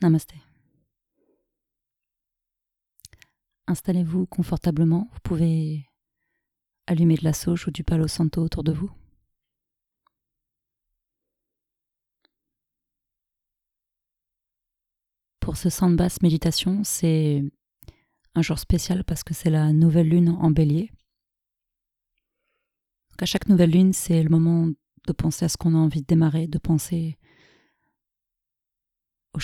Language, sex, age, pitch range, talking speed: French, female, 30-49, 150-175 Hz, 110 wpm